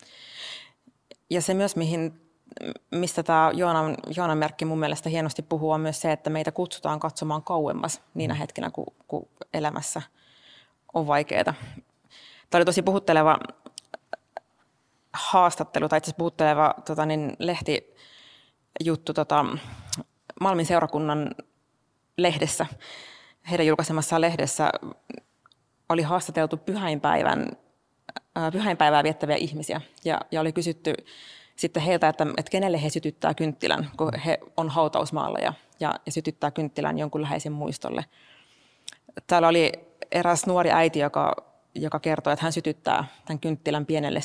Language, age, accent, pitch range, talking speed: Finnish, 20-39, native, 150-165 Hz, 120 wpm